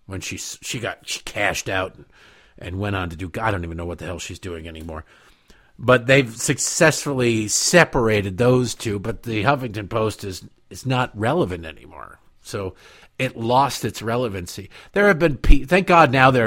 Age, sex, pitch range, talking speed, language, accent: 50-69, male, 90-120 Hz, 180 wpm, English, American